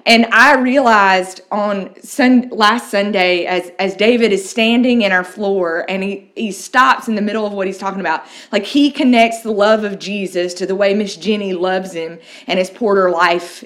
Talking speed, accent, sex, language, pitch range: 200 wpm, American, female, English, 185-230 Hz